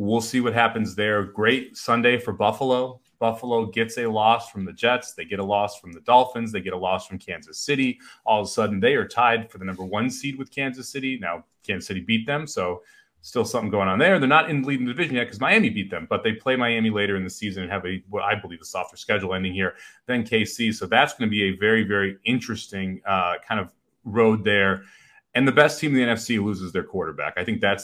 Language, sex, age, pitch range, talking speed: English, male, 30-49, 95-125 Hz, 250 wpm